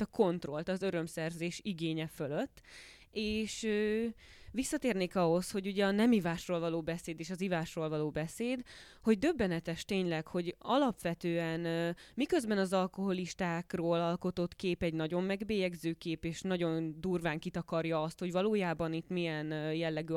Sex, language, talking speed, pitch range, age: female, Hungarian, 145 wpm, 165-195 Hz, 20-39